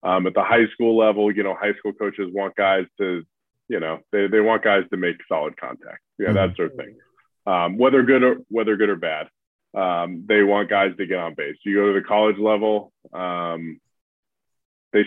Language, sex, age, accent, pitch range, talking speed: English, male, 20-39, American, 85-110 Hz, 210 wpm